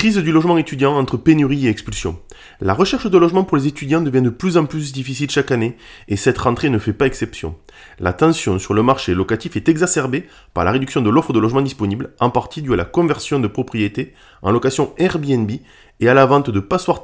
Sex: male